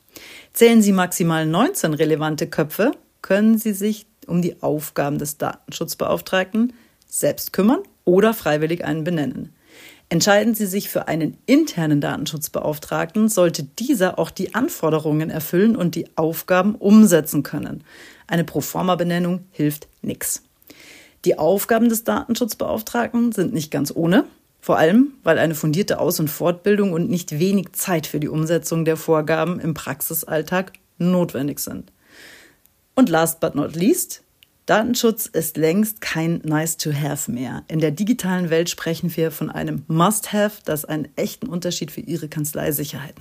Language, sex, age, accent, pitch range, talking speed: German, female, 40-59, German, 155-205 Hz, 135 wpm